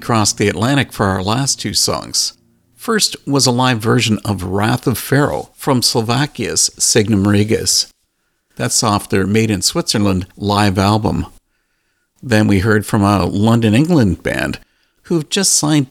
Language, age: English, 50-69